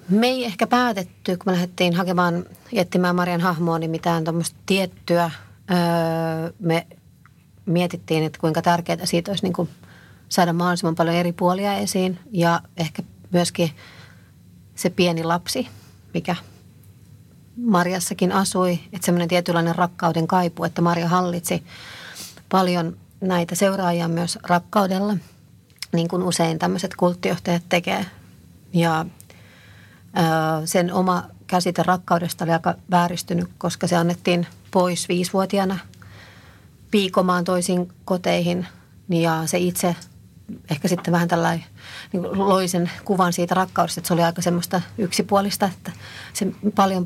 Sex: female